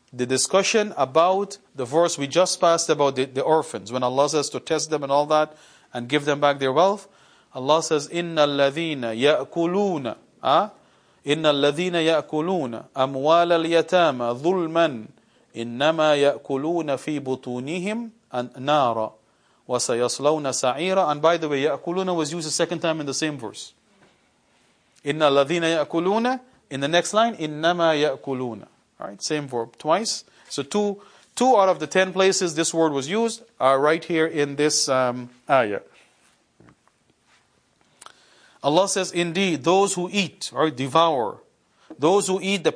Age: 40-59